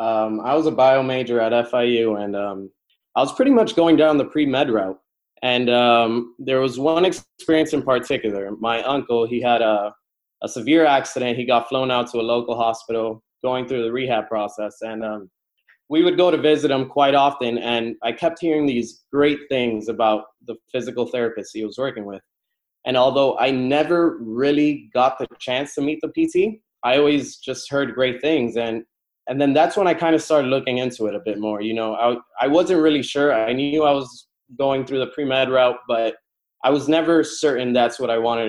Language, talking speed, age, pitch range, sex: English, 205 wpm, 20-39, 115-140 Hz, male